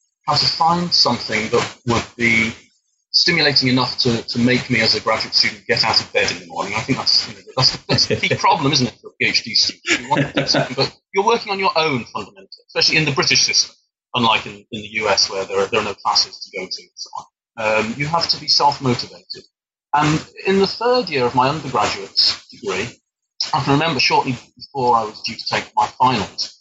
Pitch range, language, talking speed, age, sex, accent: 115-165 Hz, English, 225 wpm, 30-49, male, British